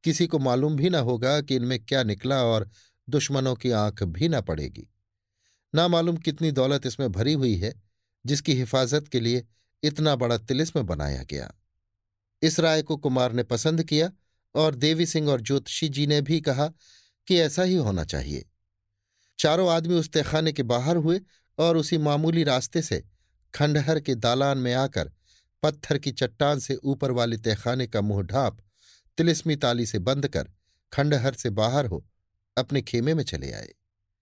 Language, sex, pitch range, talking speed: Hindi, male, 100-145 Hz, 170 wpm